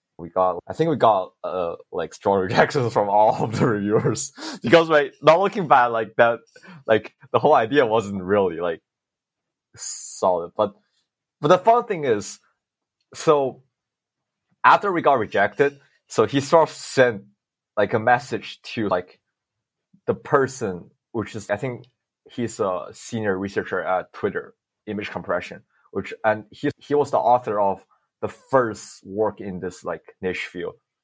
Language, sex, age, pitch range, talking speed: English, male, 20-39, 105-145 Hz, 155 wpm